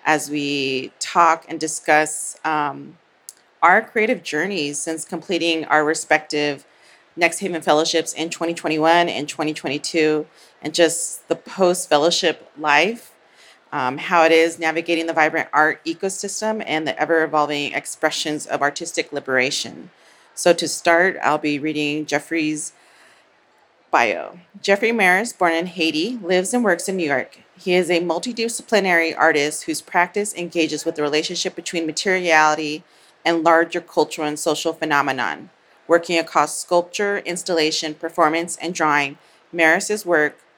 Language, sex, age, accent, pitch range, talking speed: English, female, 30-49, American, 150-175 Hz, 135 wpm